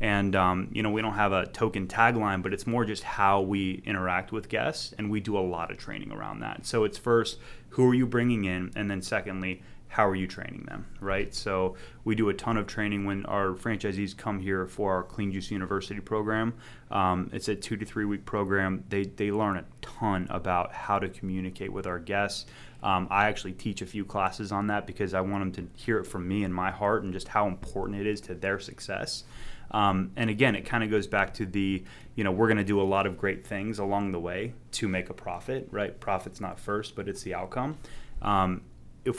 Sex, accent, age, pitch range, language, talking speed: male, American, 20-39, 95-105 Hz, English, 230 wpm